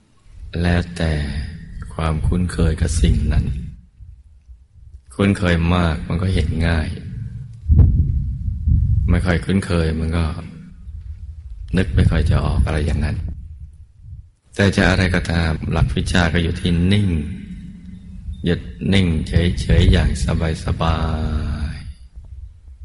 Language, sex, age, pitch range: Thai, male, 20-39, 80-90 Hz